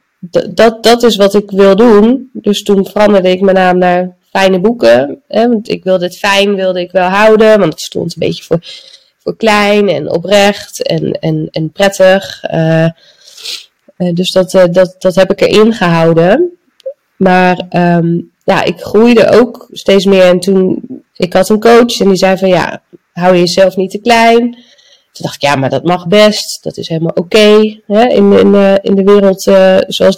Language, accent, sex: Dutch, Dutch, female